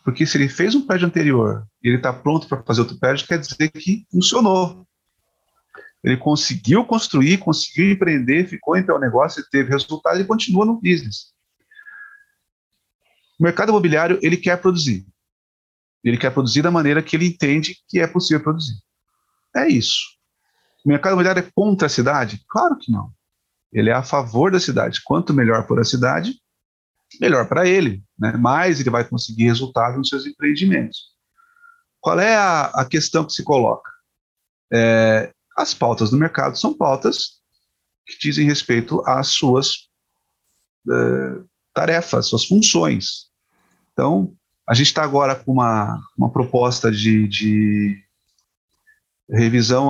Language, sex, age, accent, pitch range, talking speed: Portuguese, male, 40-59, Brazilian, 120-180 Hz, 145 wpm